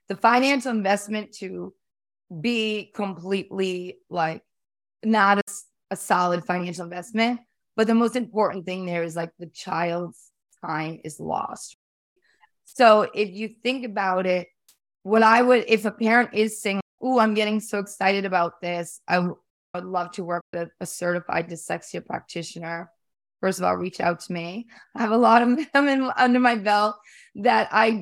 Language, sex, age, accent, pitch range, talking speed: English, female, 20-39, American, 180-220 Hz, 165 wpm